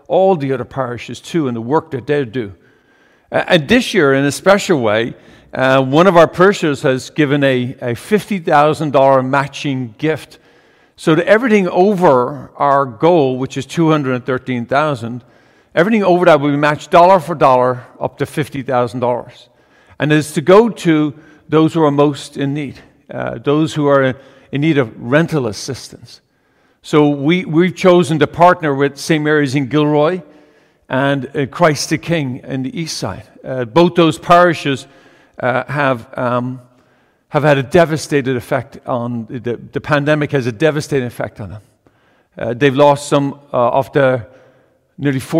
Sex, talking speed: male, 160 wpm